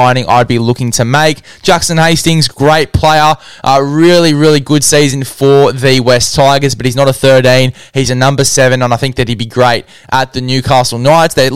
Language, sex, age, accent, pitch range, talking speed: English, male, 10-29, Australian, 125-155 Hz, 200 wpm